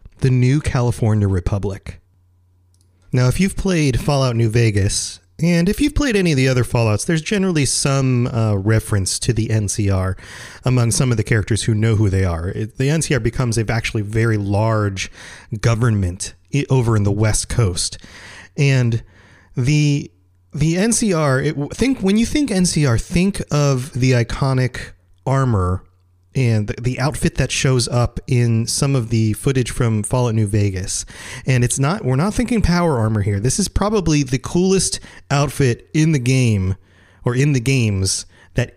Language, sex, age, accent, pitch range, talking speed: English, male, 30-49, American, 100-135 Hz, 165 wpm